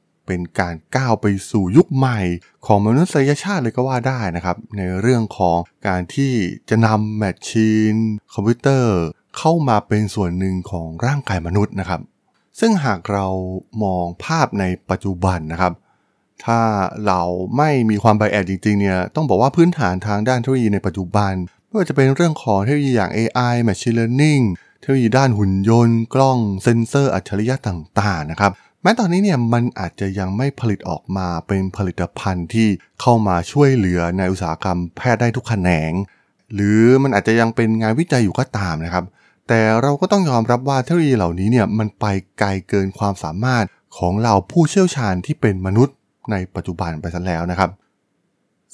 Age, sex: 20-39, male